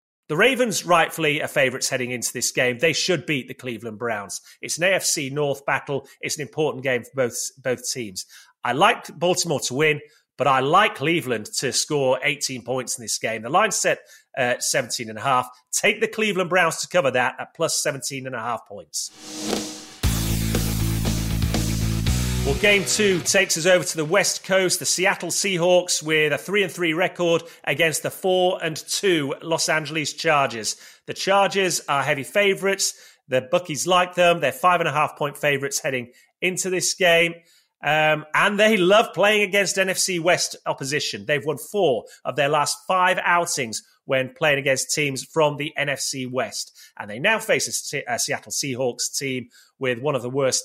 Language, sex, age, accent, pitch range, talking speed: English, male, 30-49, British, 135-180 Hz, 170 wpm